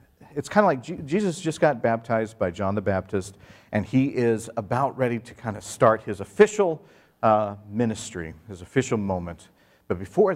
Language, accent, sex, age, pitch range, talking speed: English, American, male, 50-69, 100-135 Hz, 175 wpm